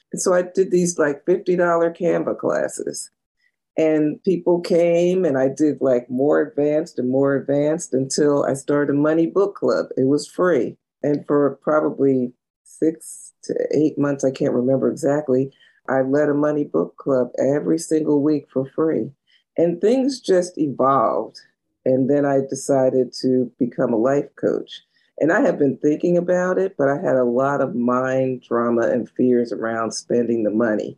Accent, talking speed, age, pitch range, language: American, 165 wpm, 40-59, 130-155 Hz, English